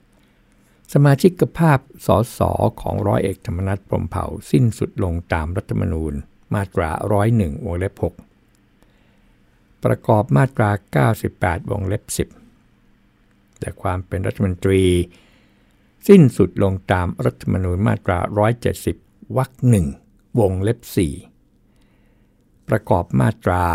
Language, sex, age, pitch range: Thai, male, 60-79, 90-115 Hz